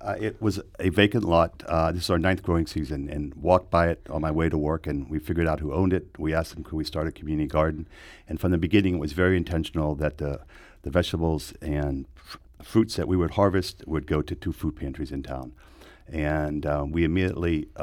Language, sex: English, male